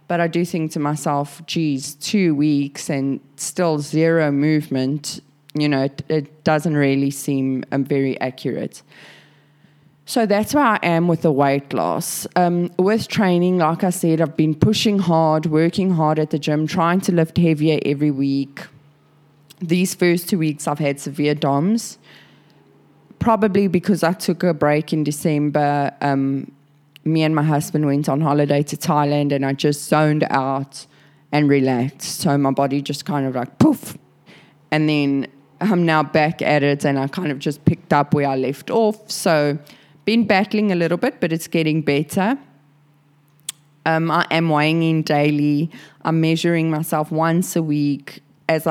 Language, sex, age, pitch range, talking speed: English, female, 20-39, 145-170 Hz, 165 wpm